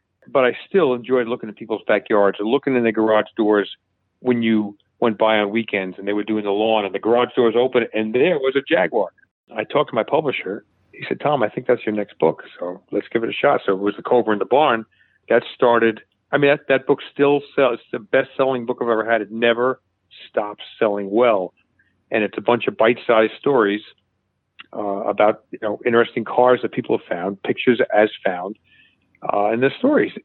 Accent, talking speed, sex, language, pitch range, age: American, 220 wpm, male, English, 105-125 Hz, 40-59